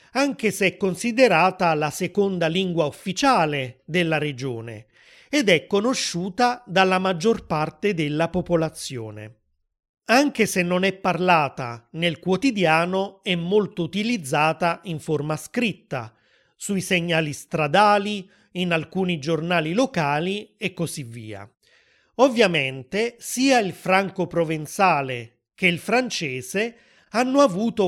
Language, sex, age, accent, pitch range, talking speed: Italian, male, 30-49, native, 150-205 Hz, 110 wpm